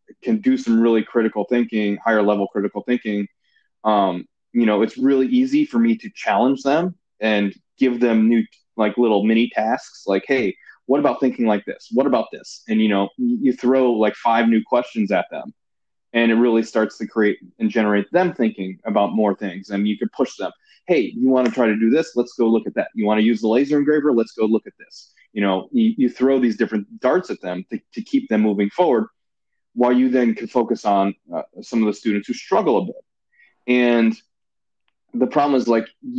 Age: 20-39